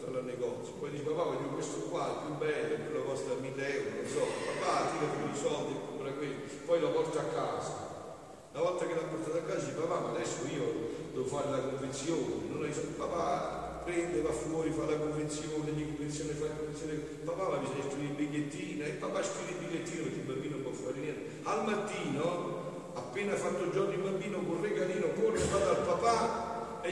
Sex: male